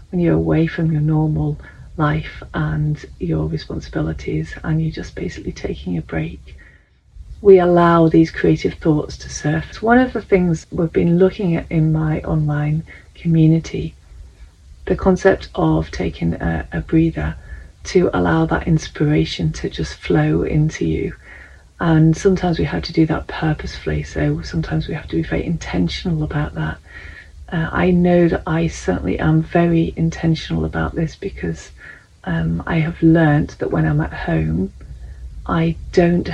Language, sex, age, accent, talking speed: English, female, 40-59, British, 155 wpm